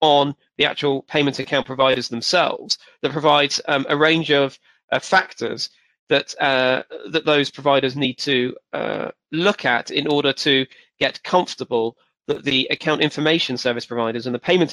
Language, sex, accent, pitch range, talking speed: English, male, British, 125-150 Hz, 155 wpm